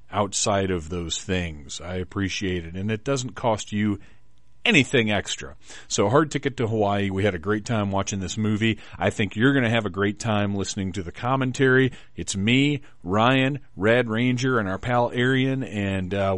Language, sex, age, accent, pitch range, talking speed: English, male, 40-59, American, 95-120 Hz, 185 wpm